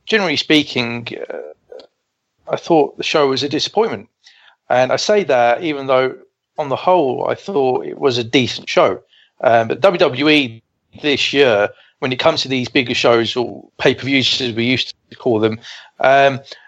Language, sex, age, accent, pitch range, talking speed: English, male, 40-59, British, 125-150 Hz, 175 wpm